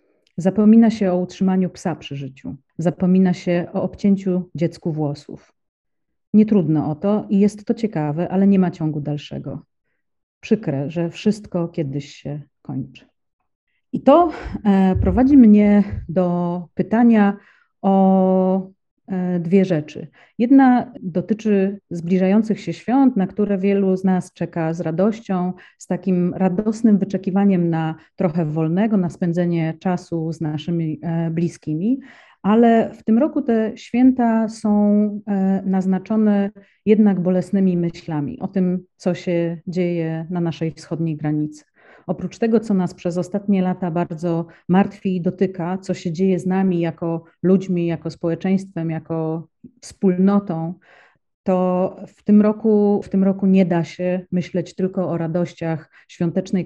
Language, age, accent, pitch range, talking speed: English, 40-59, Polish, 170-200 Hz, 130 wpm